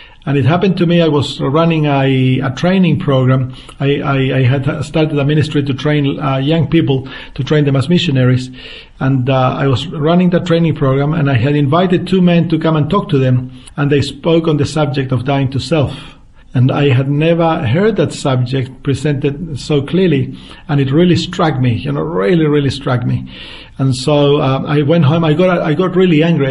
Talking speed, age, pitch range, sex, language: 210 wpm, 50-69, 135-165 Hz, male, English